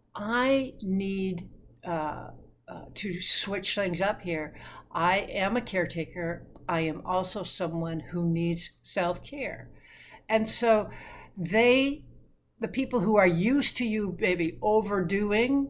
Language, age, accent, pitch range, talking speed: English, 60-79, American, 160-215 Hz, 120 wpm